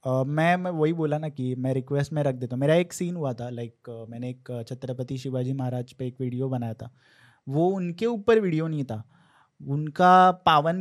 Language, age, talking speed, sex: Hindi, 20-39, 205 wpm, male